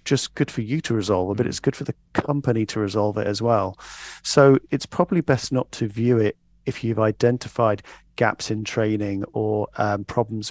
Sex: male